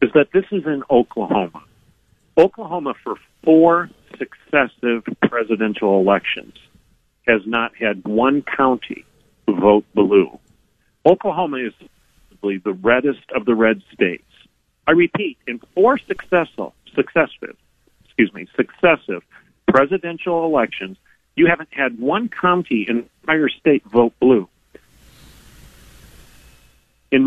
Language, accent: English, American